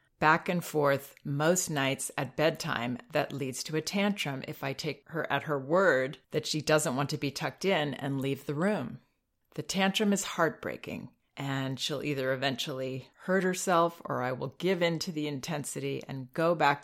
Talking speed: 185 wpm